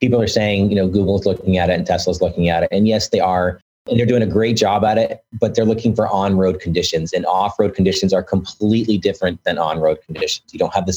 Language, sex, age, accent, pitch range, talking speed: English, male, 30-49, American, 95-110 Hz, 265 wpm